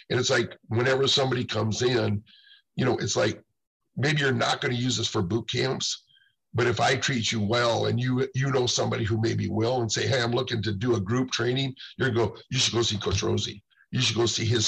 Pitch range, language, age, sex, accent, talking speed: 110-125 Hz, English, 50-69, male, American, 240 wpm